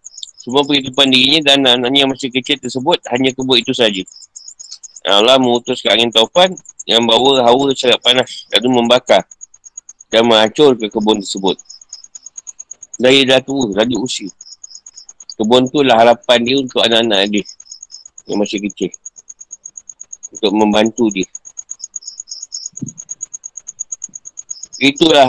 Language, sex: Malay, male